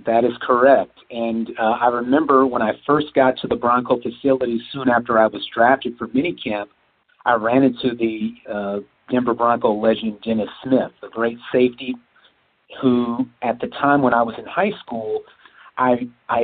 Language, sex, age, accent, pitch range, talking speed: English, male, 50-69, American, 110-130 Hz, 170 wpm